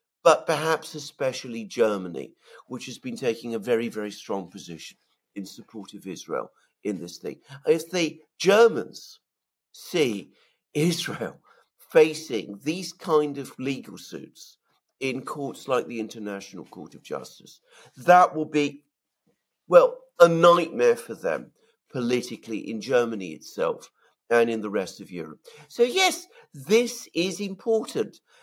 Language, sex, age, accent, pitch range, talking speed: English, male, 50-69, British, 125-205 Hz, 130 wpm